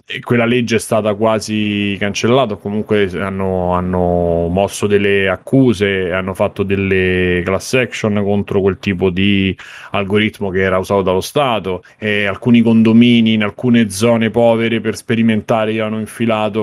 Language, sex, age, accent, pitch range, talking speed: Italian, male, 30-49, native, 100-120 Hz, 145 wpm